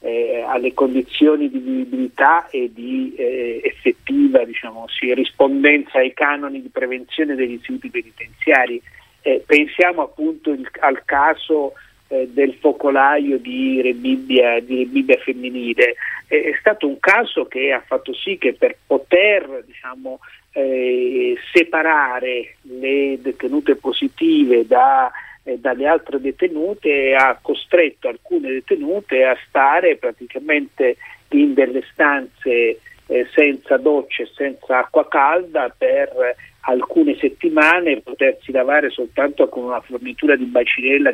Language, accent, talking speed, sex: Italian, native, 120 wpm, male